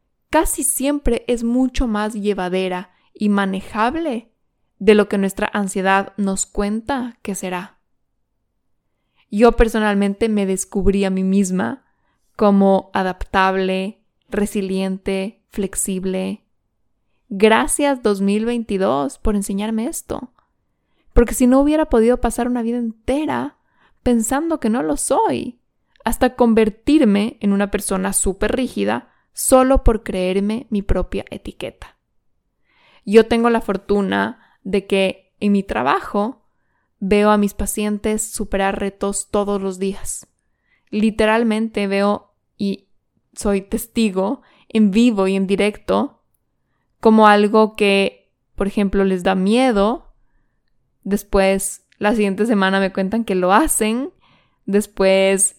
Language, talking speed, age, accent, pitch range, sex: Spanish, 115 wpm, 20-39, Mexican, 195-235 Hz, female